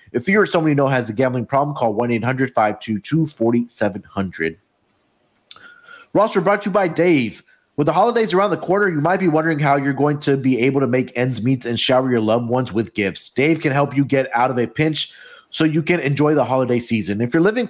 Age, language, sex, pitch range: 30-49, English, male, 120-155 Hz